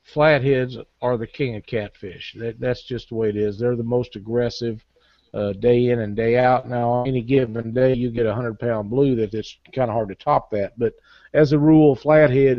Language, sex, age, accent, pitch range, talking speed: English, male, 50-69, American, 115-130 Hz, 210 wpm